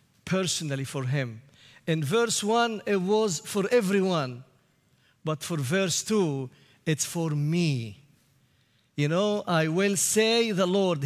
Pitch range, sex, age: 140-185 Hz, male, 50-69